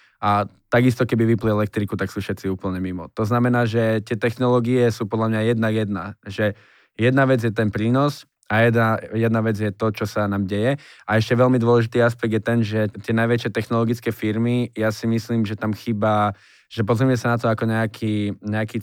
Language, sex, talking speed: Slovak, male, 195 wpm